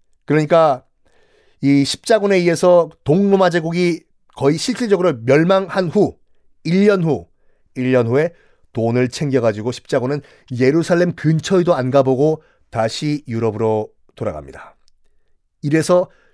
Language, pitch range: Korean, 125-195 Hz